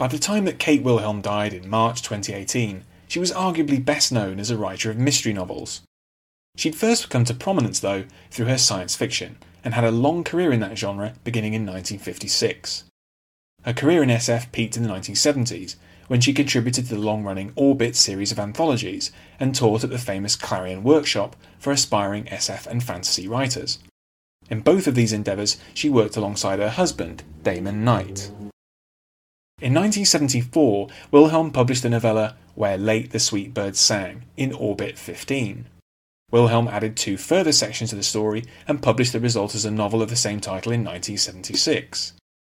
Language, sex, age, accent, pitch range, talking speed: English, male, 30-49, British, 95-125 Hz, 170 wpm